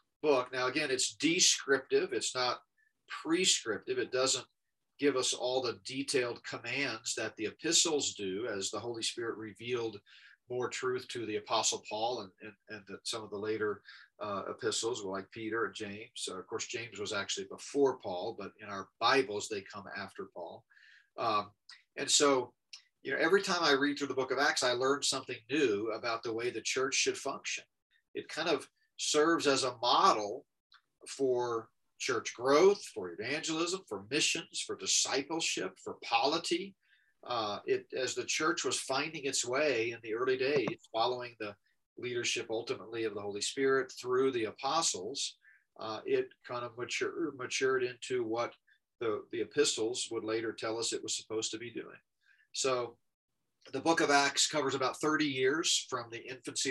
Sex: male